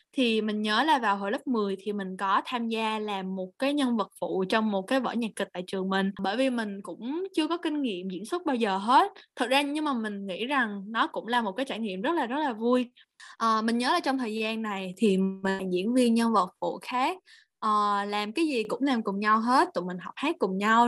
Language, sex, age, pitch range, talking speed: Vietnamese, female, 20-39, 200-255 Hz, 260 wpm